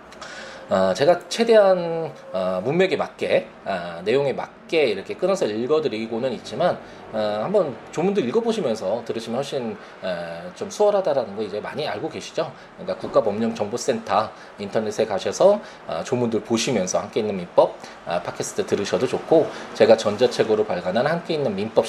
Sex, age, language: male, 20-39, Korean